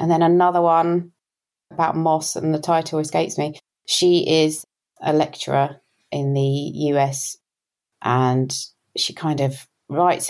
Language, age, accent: English, 20-39, British